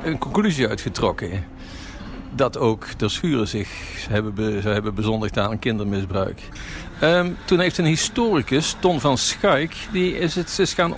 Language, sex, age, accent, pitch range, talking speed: Dutch, male, 50-69, Dutch, 110-155 Hz, 140 wpm